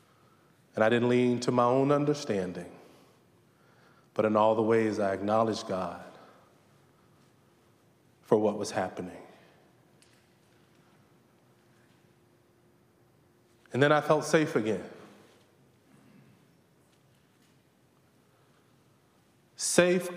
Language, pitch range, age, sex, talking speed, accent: English, 115-190 Hz, 30-49, male, 80 wpm, American